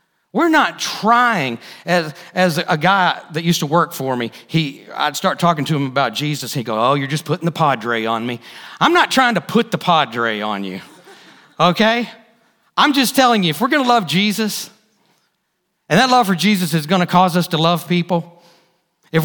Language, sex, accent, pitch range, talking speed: English, male, American, 175-245 Hz, 200 wpm